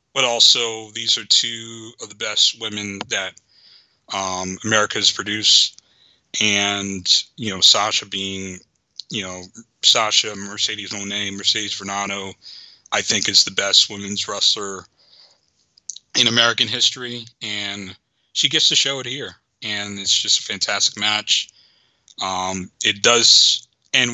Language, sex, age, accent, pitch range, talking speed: English, male, 30-49, American, 105-120 Hz, 135 wpm